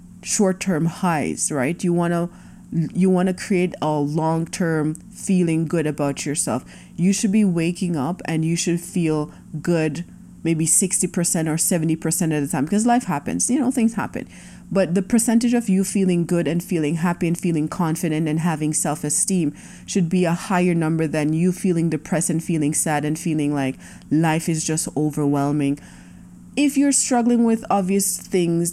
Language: English